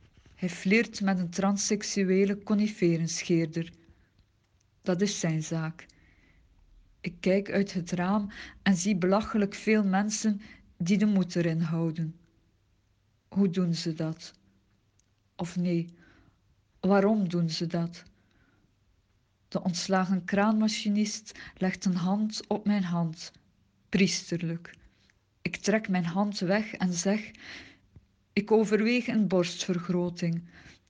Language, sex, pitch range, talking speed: Dutch, female, 160-205 Hz, 110 wpm